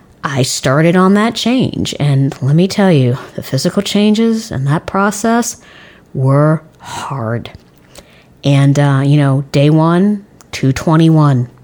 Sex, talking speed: female, 130 wpm